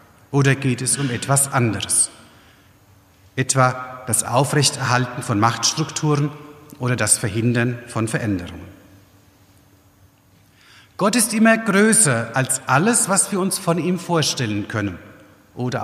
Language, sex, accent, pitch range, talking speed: German, male, German, 115-170 Hz, 115 wpm